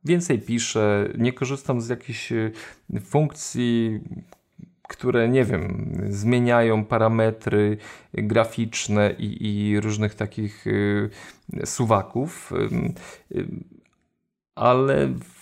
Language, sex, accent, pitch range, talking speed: Polish, male, native, 110-145 Hz, 75 wpm